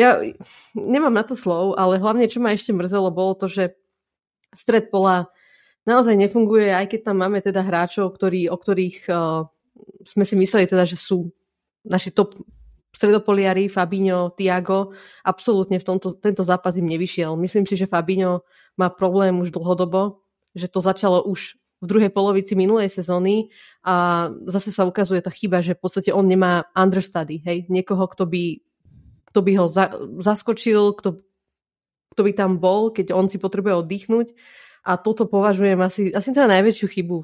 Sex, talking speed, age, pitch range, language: female, 165 wpm, 20-39, 180-205 Hz, Slovak